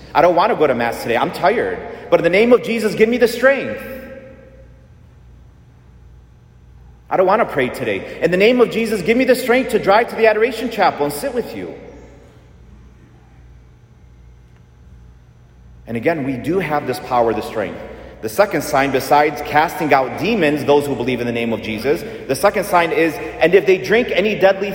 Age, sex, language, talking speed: 30-49, male, English, 190 wpm